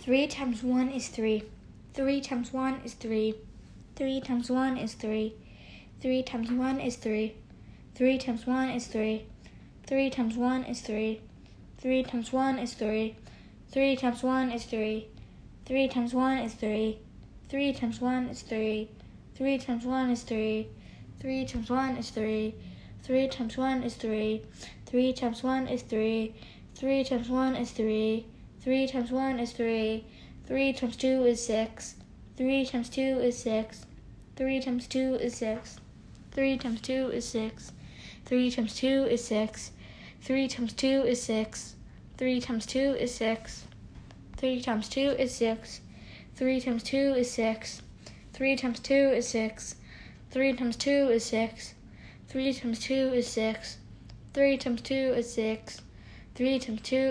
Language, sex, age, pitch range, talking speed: English, female, 10-29, 225-260 Hz, 155 wpm